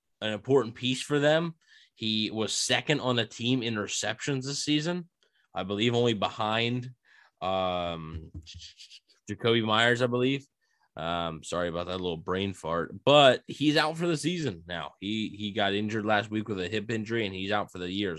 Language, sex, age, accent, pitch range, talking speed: English, male, 20-39, American, 90-120 Hz, 180 wpm